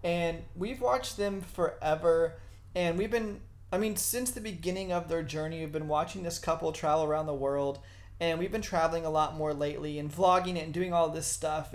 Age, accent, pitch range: 30-49, American, 145-190 Hz